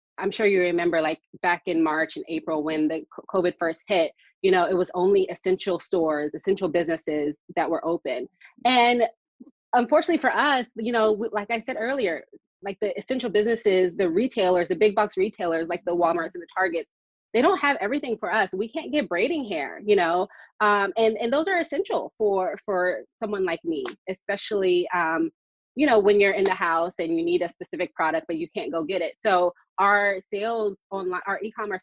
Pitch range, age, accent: 170-230 Hz, 20-39, American